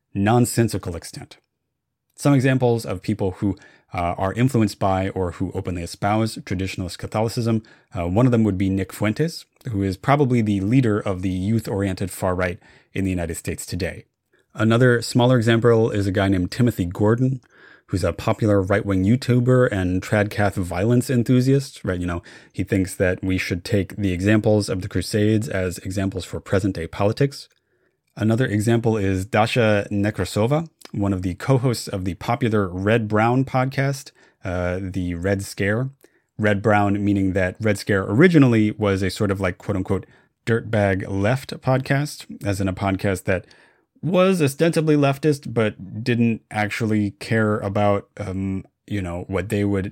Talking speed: 160 wpm